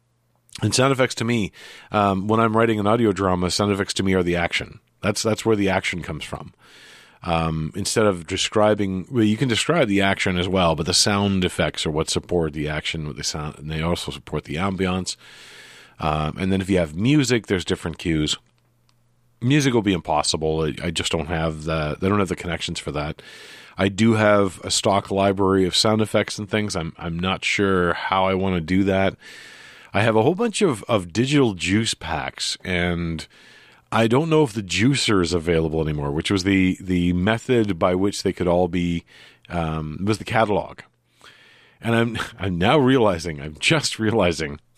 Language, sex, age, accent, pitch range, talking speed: English, male, 40-59, American, 85-110 Hz, 205 wpm